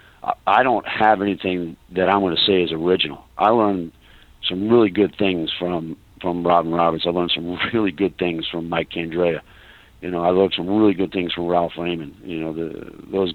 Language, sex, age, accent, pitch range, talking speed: English, male, 50-69, American, 85-100 Hz, 180 wpm